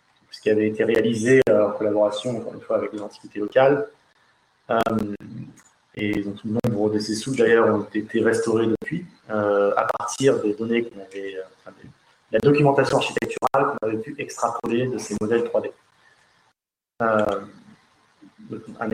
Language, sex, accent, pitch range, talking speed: French, male, French, 110-135 Hz, 140 wpm